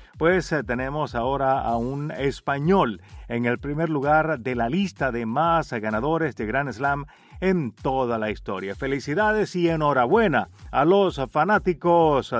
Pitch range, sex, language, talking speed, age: 130-180 Hz, male, Spanish, 140 wpm, 40-59